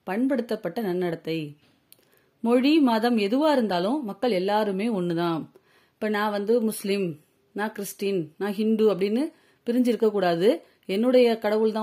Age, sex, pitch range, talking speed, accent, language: 30-49, female, 185-235 Hz, 105 wpm, native, Tamil